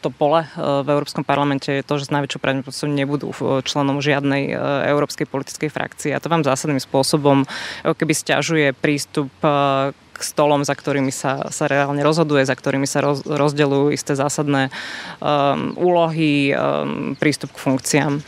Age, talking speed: 20-39, 150 wpm